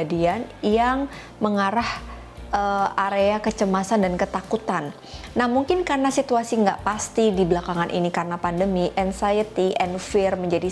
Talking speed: 125 wpm